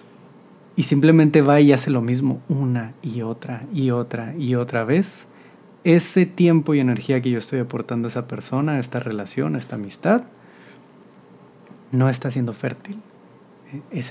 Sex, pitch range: male, 125-165 Hz